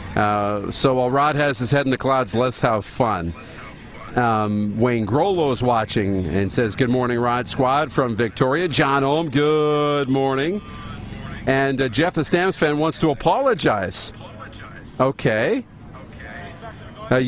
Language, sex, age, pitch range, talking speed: English, male, 50-69, 110-150 Hz, 140 wpm